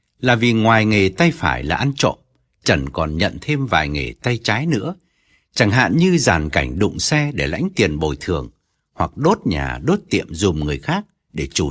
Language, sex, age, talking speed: Vietnamese, male, 60-79, 205 wpm